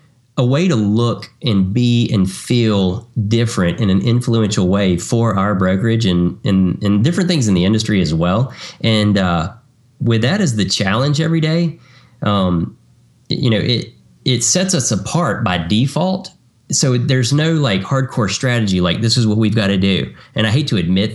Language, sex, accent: English, male, American